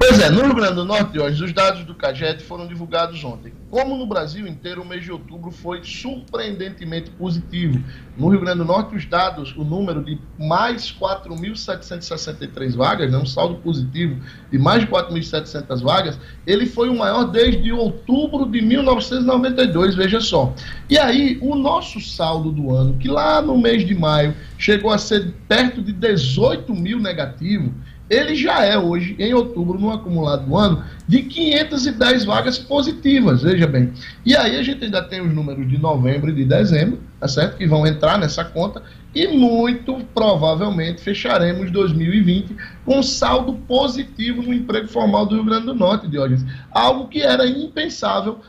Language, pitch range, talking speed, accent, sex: Portuguese, 160-235 Hz, 170 wpm, Brazilian, male